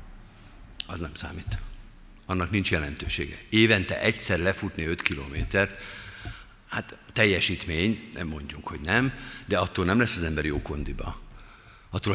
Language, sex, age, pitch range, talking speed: Hungarian, male, 50-69, 85-115 Hz, 130 wpm